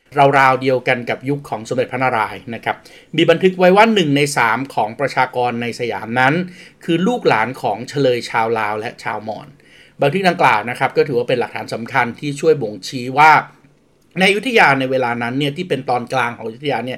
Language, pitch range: Thai, 120-150 Hz